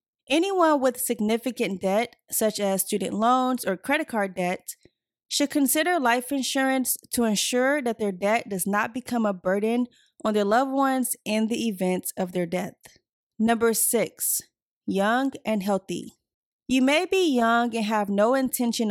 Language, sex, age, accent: English, female, 20-39, American